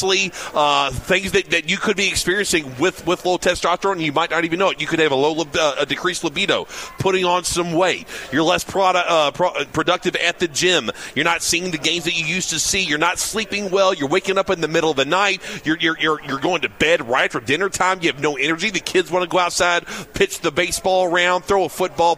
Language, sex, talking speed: English, male, 250 wpm